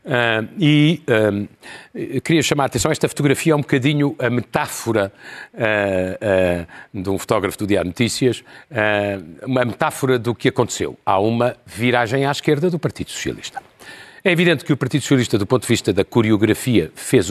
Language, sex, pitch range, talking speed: Portuguese, male, 115-155 Hz, 155 wpm